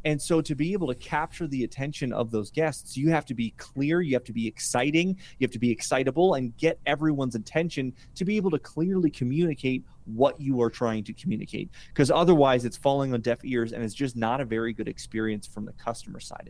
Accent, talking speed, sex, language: American, 225 wpm, male, English